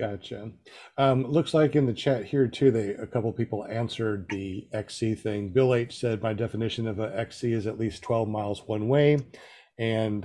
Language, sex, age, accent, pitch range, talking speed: English, male, 50-69, American, 105-135 Hz, 200 wpm